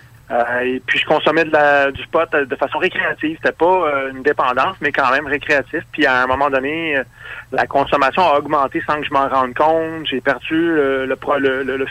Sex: male